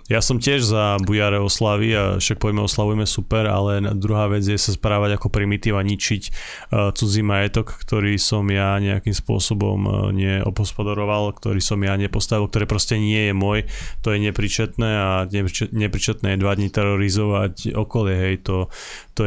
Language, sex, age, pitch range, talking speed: Slovak, male, 20-39, 100-110 Hz, 155 wpm